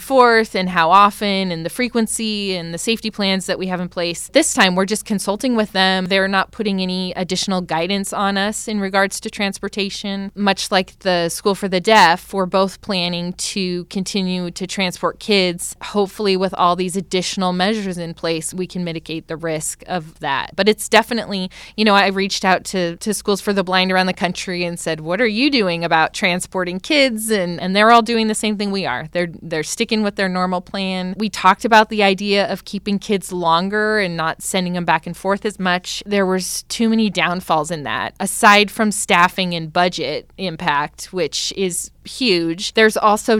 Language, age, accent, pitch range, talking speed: English, 20-39, American, 175-205 Hz, 200 wpm